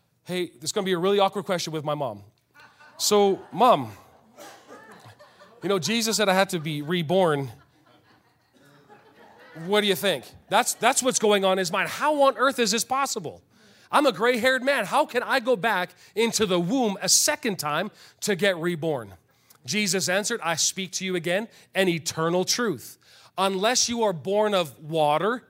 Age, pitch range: 30-49, 150-215 Hz